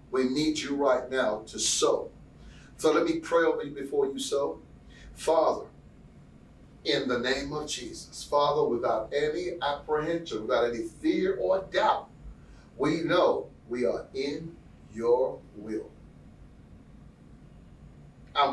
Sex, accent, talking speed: male, American, 125 wpm